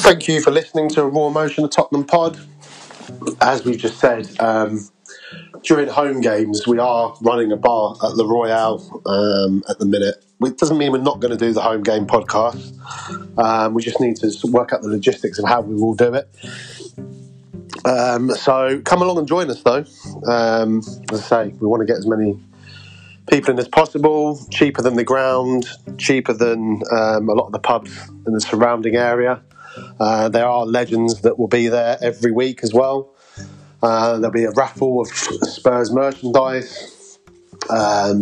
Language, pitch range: English, 110-135 Hz